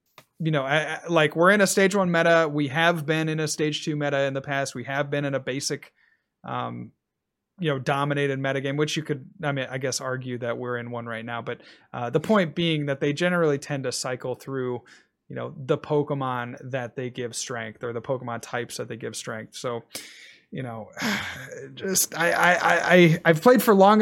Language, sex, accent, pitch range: English, male, American, 130-175 Hz